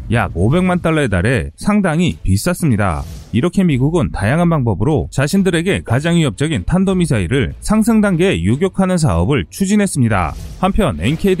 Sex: male